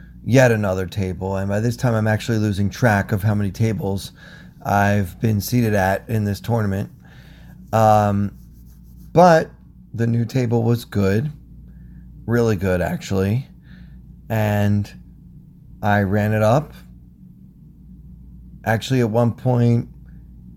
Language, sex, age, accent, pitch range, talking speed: English, male, 30-49, American, 95-115 Hz, 120 wpm